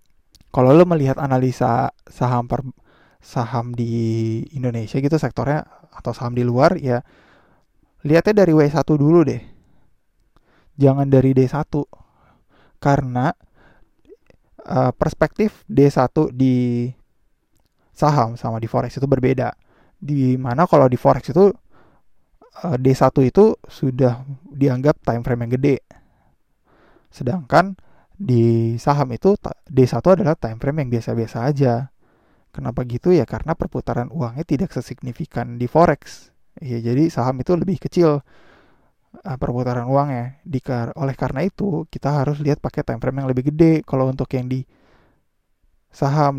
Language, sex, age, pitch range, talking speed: Indonesian, male, 20-39, 120-150 Hz, 120 wpm